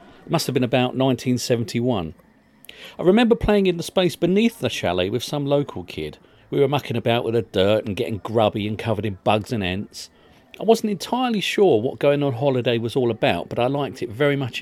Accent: British